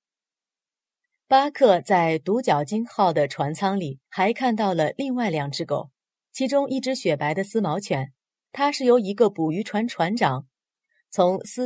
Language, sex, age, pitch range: Chinese, female, 30-49, 160-235 Hz